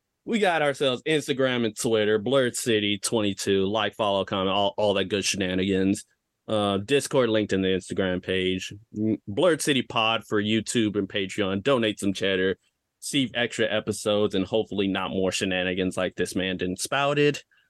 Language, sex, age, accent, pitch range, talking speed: English, male, 20-39, American, 95-110 Hz, 155 wpm